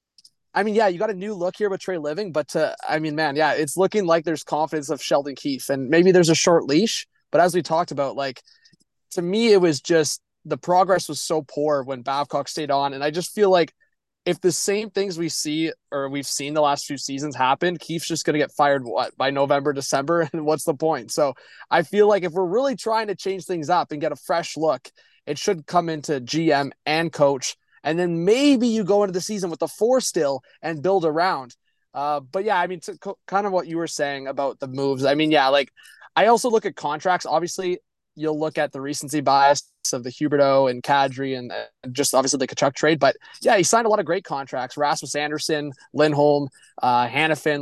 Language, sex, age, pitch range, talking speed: English, male, 20-39, 140-180 Hz, 225 wpm